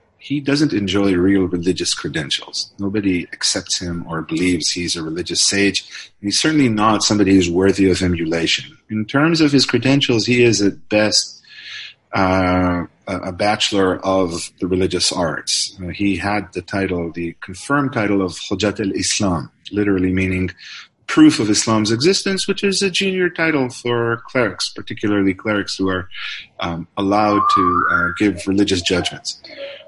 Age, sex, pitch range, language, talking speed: 30-49, male, 95-130 Hz, Hebrew, 165 wpm